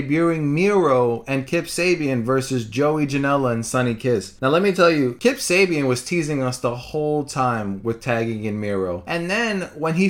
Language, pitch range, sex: English, 125-175 Hz, male